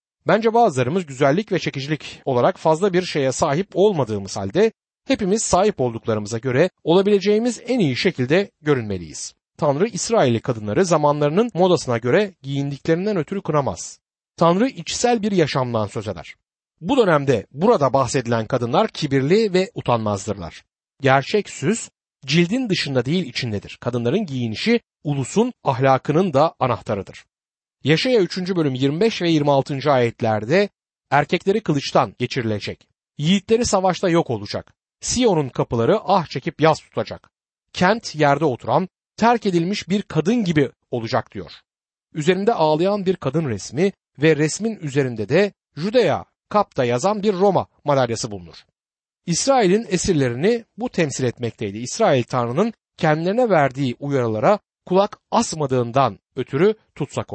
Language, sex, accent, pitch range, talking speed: Turkish, male, native, 125-195 Hz, 120 wpm